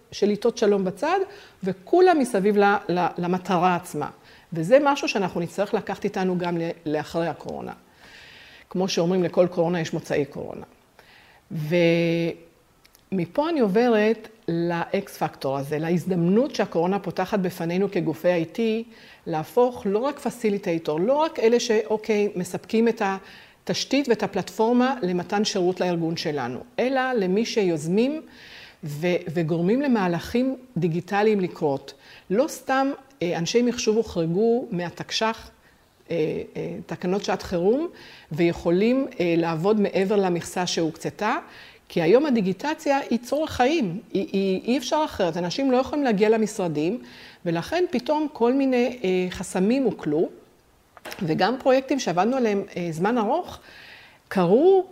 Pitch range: 175-235 Hz